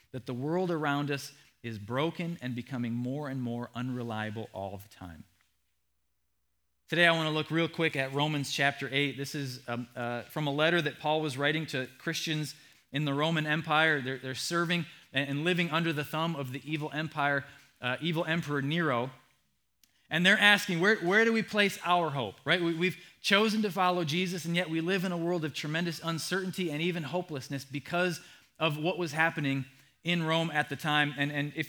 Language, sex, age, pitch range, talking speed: English, male, 20-39, 130-170 Hz, 195 wpm